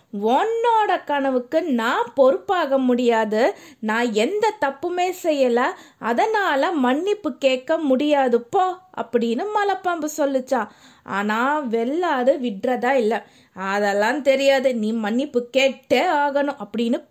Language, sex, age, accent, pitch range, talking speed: Tamil, female, 20-39, native, 230-290 Hz, 90 wpm